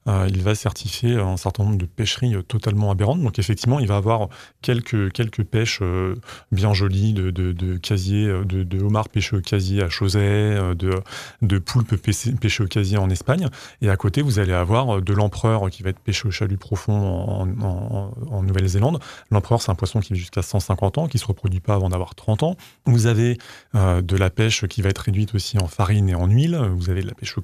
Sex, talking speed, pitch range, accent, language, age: male, 225 wpm, 100-115 Hz, French, French, 30-49